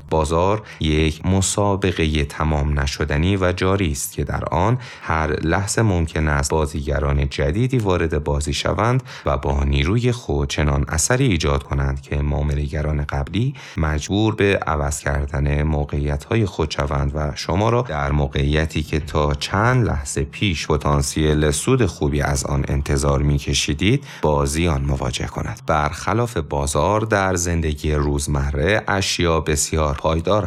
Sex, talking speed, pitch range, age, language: male, 130 wpm, 75-90 Hz, 30-49, Persian